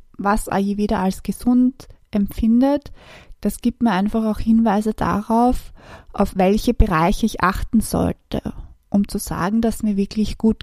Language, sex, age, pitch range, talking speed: German, female, 20-39, 200-240 Hz, 150 wpm